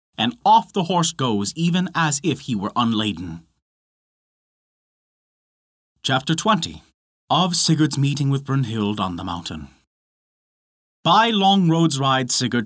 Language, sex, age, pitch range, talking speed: English, male, 30-49, 120-175 Hz, 125 wpm